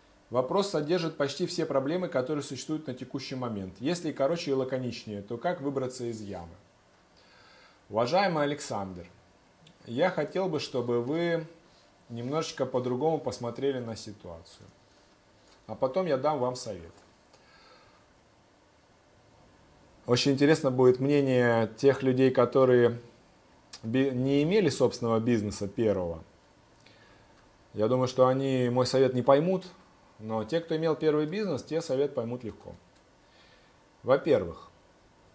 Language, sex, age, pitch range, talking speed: Russian, male, 30-49, 105-150 Hz, 115 wpm